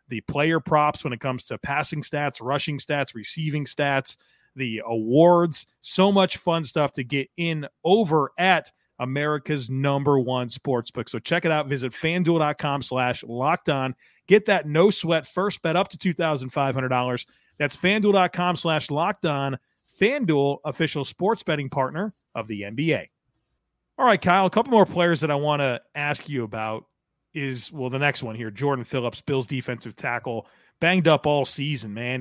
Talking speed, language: 160 wpm, English